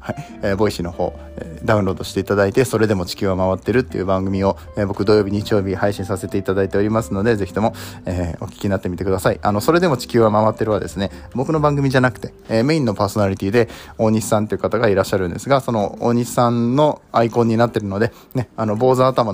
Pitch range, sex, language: 100-130 Hz, male, Japanese